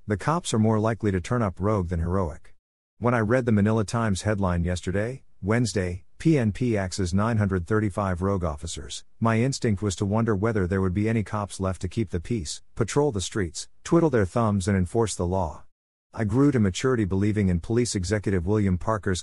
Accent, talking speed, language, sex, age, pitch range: American, 190 wpm, English, male, 50-69, 90-115 Hz